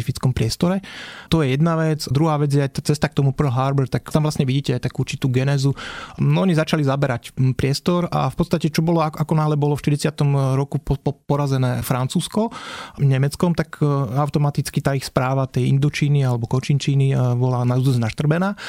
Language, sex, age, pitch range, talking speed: Slovak, male, 30-49, 130-150 Hz, 175 wpm